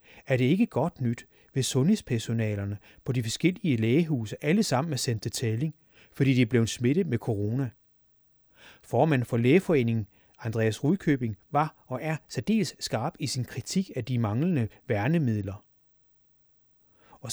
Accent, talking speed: native, 145 wpm